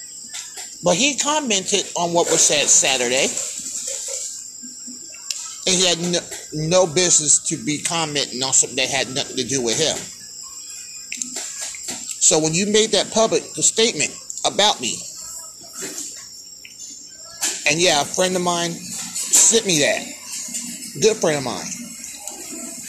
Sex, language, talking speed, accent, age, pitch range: male, English, 125 wpm, American, 30-49, 155-230 Hz